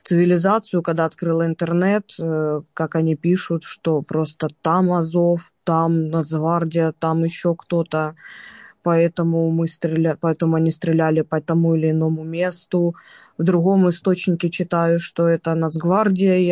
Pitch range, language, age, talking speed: 160-175 Hz, Ukrainian, 20-39, 125 wpm